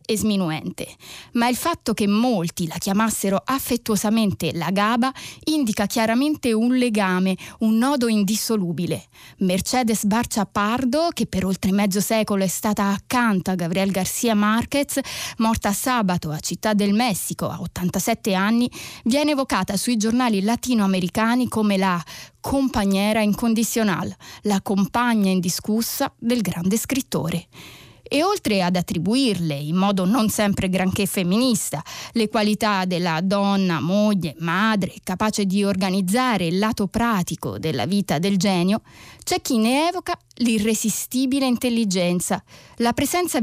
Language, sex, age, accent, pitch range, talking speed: Italian, female, 20-39, native, 190-240 Hz, 125 wpm